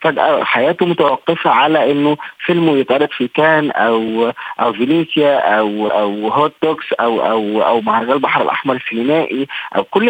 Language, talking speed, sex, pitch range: Arabic, 135 wpm, male, 120-185 Hz